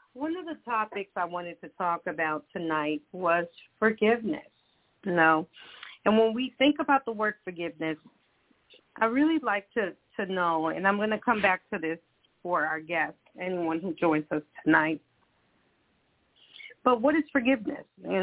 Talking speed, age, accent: 160 wpm, 40-59, American